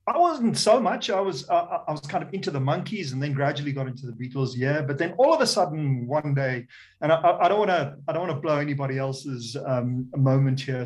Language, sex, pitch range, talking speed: English, male, 130-160 Hz, 230 wpm